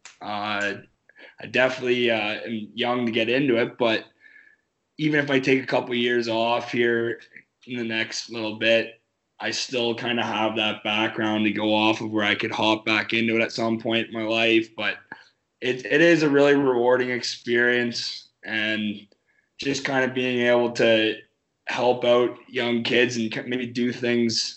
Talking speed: 180 wpm